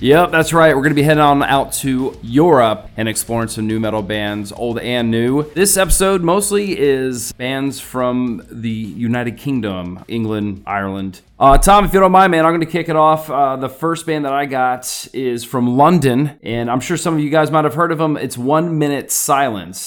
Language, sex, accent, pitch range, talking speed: English, male, American, 110-140 Hz, 210 wpm